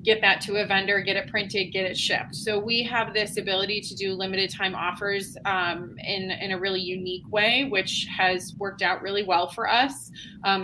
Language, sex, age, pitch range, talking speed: English, female, 20-39, 185-210 Hz, 210 wpm